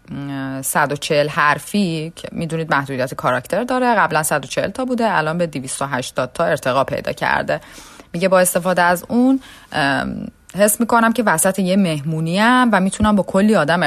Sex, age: female, 30-49